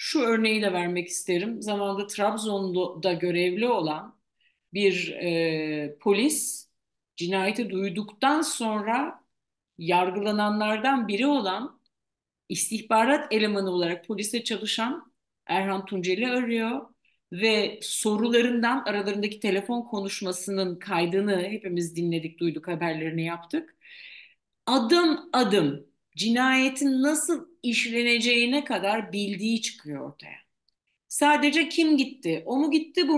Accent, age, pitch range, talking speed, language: native, 50-69, 190-280 Hz, 95 wpm, Turkish